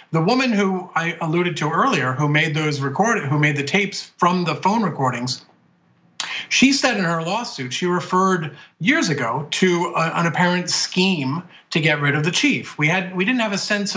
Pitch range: 145-185 Hz